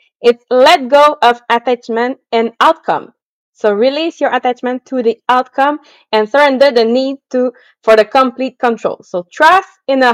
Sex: female